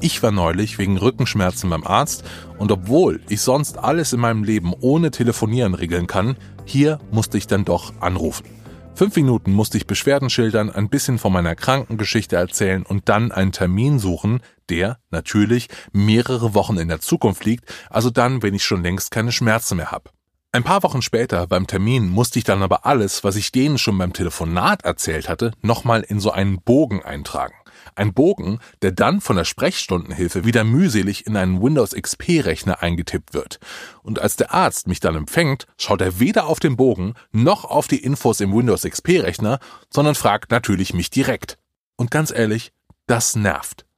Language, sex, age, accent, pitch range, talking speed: German, male, 30-49, German, 95-125 Hz, 175 wpm